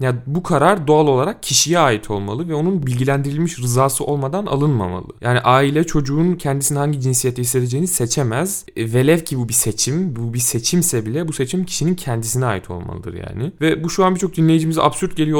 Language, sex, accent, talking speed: Turkish, male, native, 180 wpm